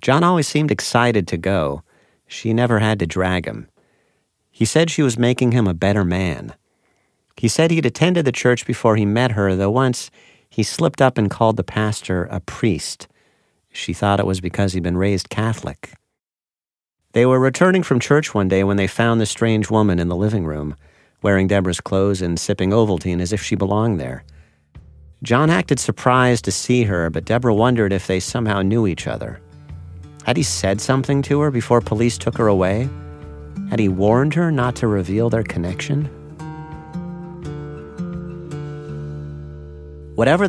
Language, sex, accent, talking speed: English, male, American, 170 wpm